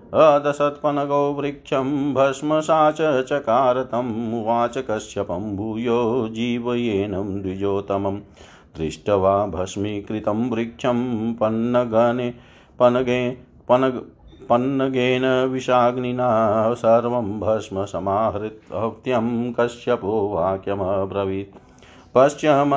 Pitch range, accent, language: 100-130 Hz, native, Hindi